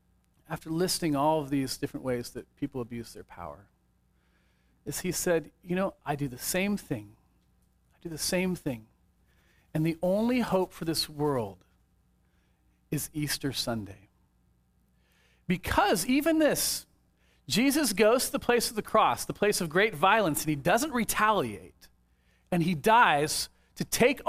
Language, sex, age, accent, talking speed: English, male, 40-59, American, 155 wpm